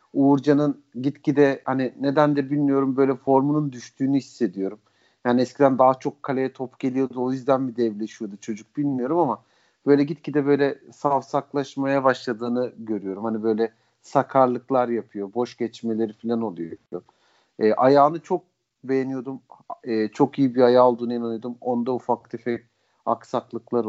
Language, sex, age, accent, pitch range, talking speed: Turkish, male, 40-59, native, 115-140 Hz, 130 wpm